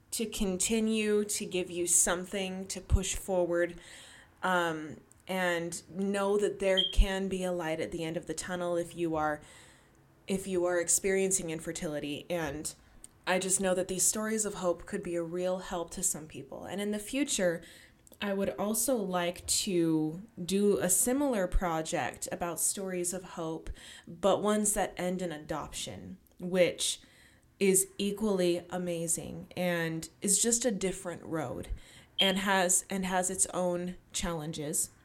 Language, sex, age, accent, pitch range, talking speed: English, female, 20-39, American, 170-195 Hz, 150 wpm